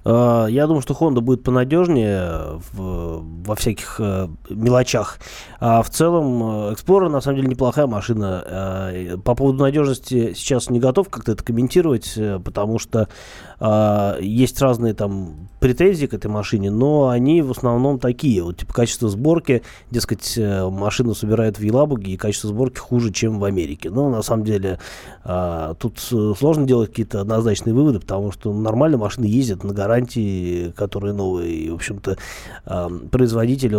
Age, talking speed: 20-39, 155 wpm